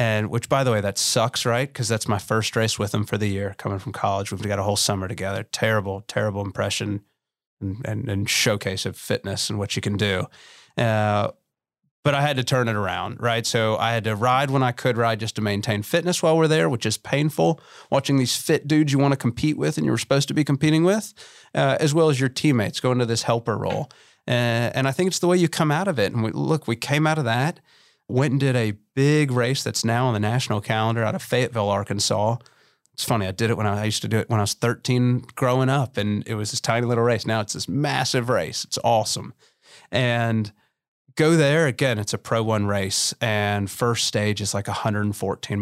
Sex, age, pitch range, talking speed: male, 30-49, 105-130 Hz, 235 wpm